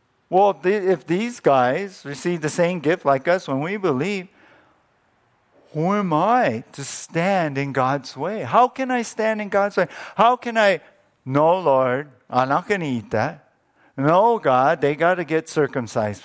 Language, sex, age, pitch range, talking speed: English, male, 50-69, 120-185 Hz, 170 wpm